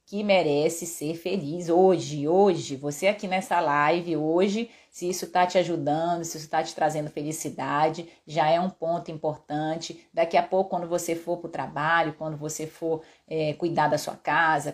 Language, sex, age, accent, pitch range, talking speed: Portuguese, female, 30-49, Brazilian, 155-185 Hz, 180 wpm